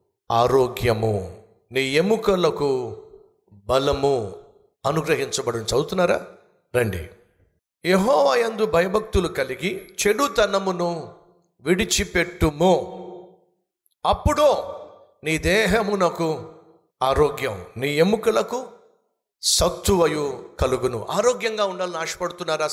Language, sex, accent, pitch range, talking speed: Telugu, male, native, 135-215 Hz, 60 wpm